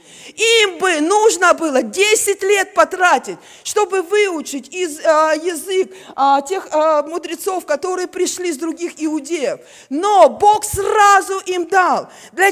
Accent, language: native, Russian